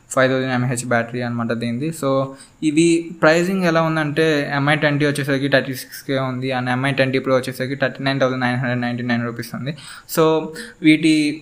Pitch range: 130-150 Hz